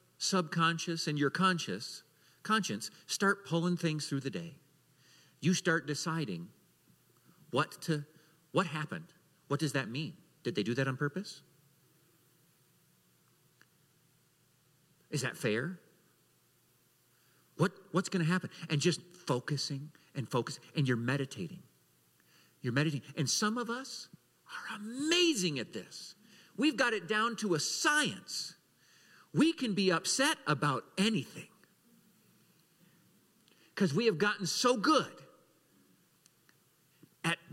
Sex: male